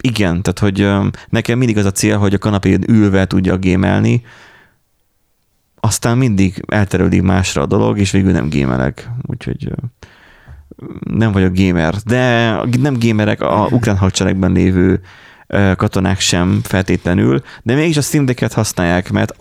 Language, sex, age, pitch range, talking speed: Hungarian, male, 30-49, 95-115 Hz, 135 wpm